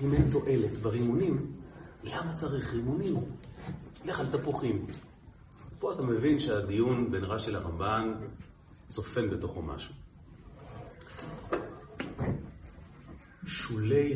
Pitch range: 95-125 Hz